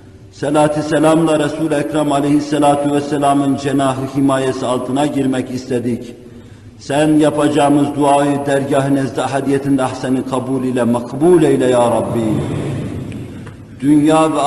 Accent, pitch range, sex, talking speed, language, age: native, 140-155 Hz, male, 105 wpm, Turkish, 50-69